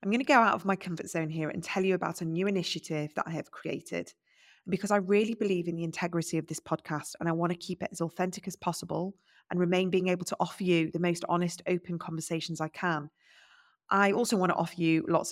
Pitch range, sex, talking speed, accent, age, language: 165-185 Hz, female, 245 wpm, British, 20-39, English